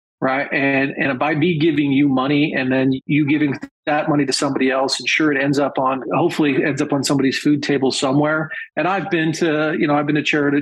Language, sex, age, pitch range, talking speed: English, male, 40-59, 140-165 Hz, 230 wpm